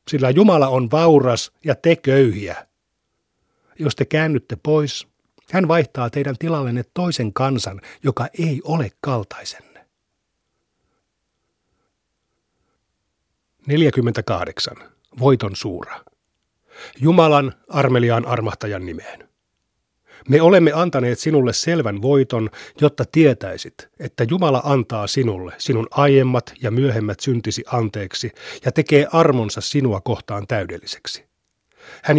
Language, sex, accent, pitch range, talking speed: Finnish, male, native, 115-145 Hz, 95 wpm